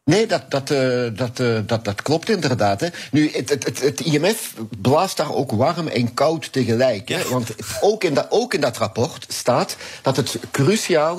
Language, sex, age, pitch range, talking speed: Dutch, male, 50-69, 110-145 Hz, 195 wpm